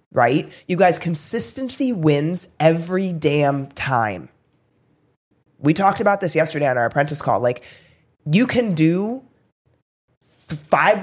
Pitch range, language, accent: 150-210 Hz, English, American